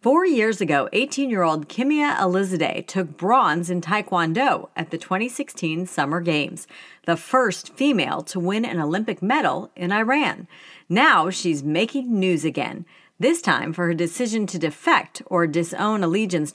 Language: English